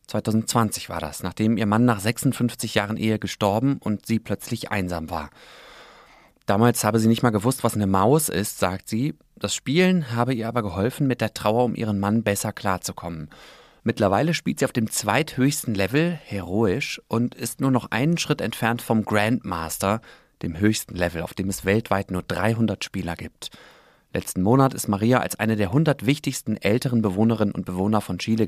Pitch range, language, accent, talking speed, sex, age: 100-120 Hz, German, German, 180 wpm, male, 30-49